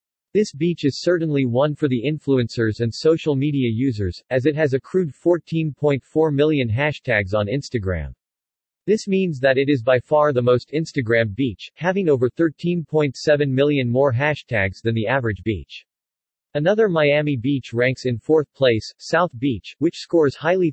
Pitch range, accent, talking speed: 120-150 Hz, American, 155 wpm